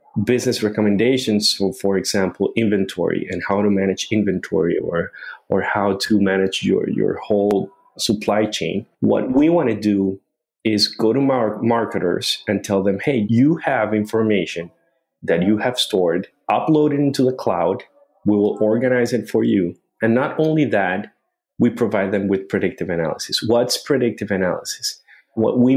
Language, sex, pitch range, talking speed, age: English, male, 100-130 Hz, 160 wpm, 30-49